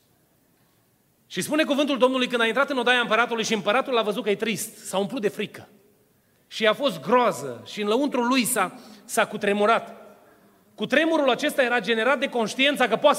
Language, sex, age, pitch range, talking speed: Romanian, male, 30-49, 200-255 Hz, 175 wpm